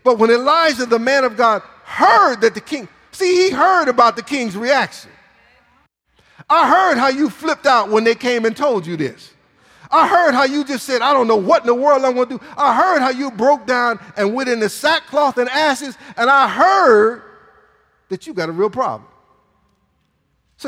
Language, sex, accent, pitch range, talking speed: English, male, American, 215-280 Hz, 205 wpm